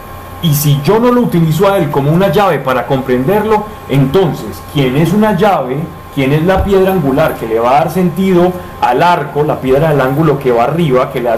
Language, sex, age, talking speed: Spanish, male, 30-49, 215 wpm